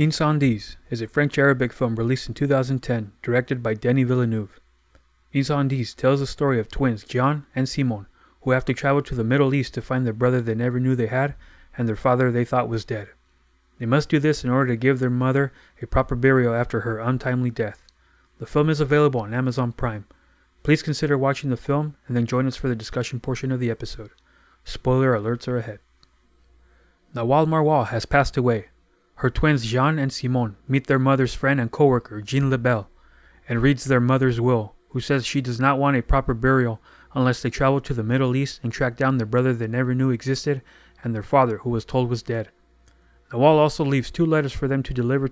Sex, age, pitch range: male, 30-49, 115-135 Hz